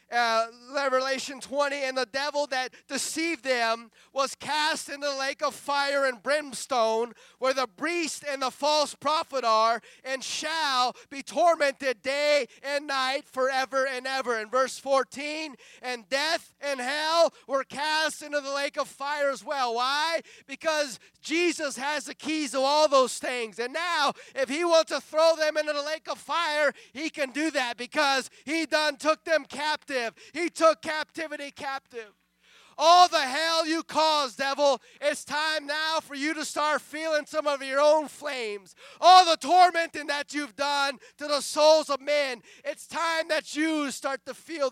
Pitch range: 255-305 Hz